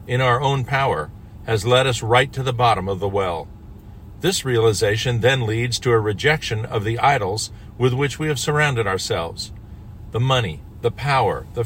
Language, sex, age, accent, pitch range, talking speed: English, male, 50-69, American, 105-130 Hz, 180 wpm